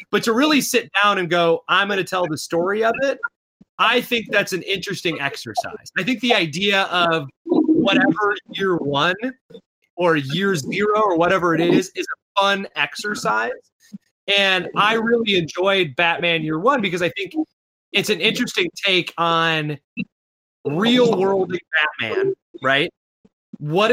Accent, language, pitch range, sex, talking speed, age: American, English, 170-225 Hz, male, 155 wpm, 30-49